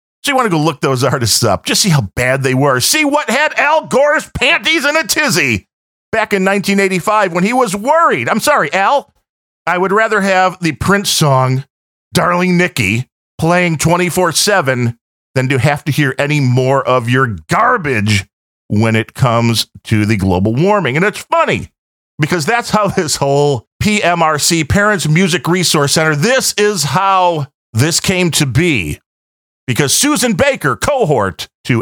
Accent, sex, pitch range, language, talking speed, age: American, male, 130-205 Hz, English, 165 wpm, 40-59